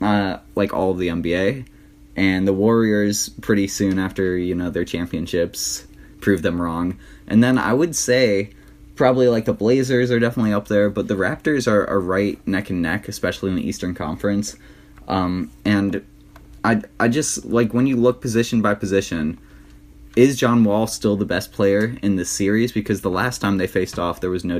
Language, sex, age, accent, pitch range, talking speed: English, male, 20-39, American, 90-105 Hz, 190 wpm